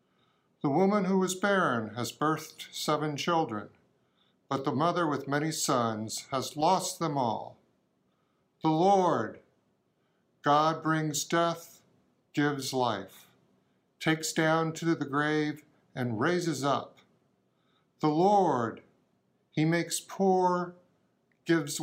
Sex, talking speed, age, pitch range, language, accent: male, 110 wpm, 50-69, 135-175 Hz, English, American